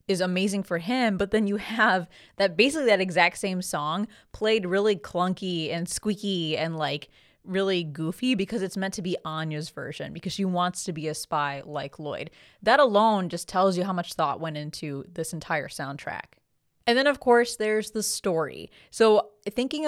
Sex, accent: female, American